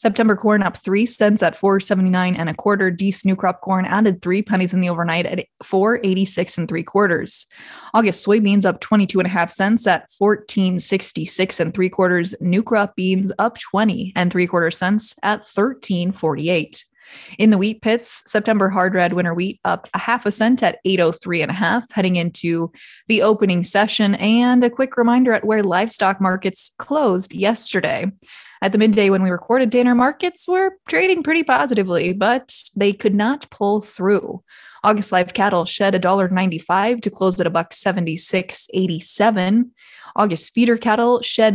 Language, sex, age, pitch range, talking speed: English, female, 20-39, 185-220 Hz, 165 wpm